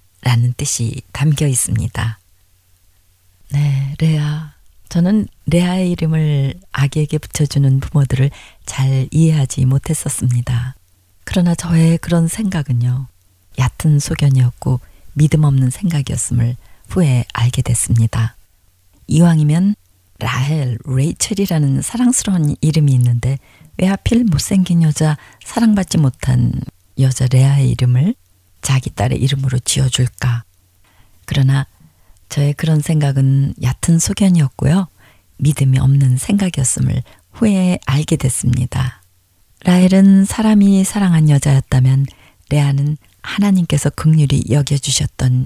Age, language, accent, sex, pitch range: 40-59, Korean, native, female, 120-155 Hz